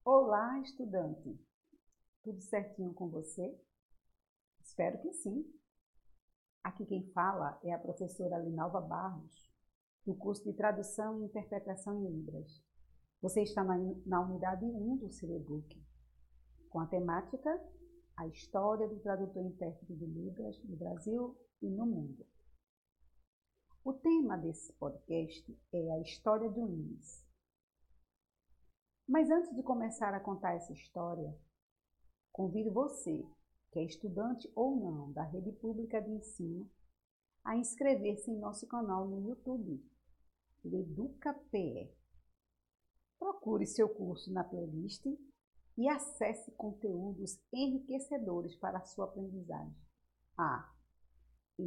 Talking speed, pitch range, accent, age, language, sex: 115 wpm, 165-225 Hz, Brazilian, 50-69, Portuguese, female